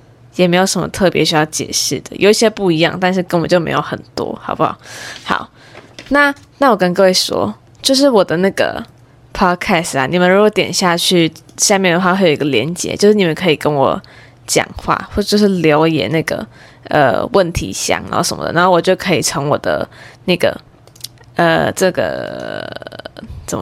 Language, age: Chinese, 20-39